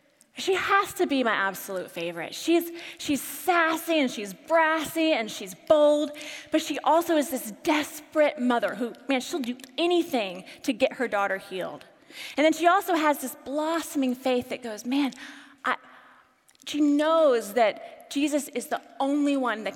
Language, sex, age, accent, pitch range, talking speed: English, female, 20-39, American, 220-315 Hz, 165 wpm